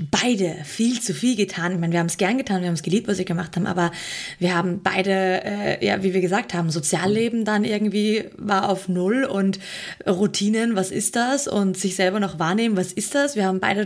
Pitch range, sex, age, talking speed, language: 195-230 Hz, female, 20-39, 225 wpm, German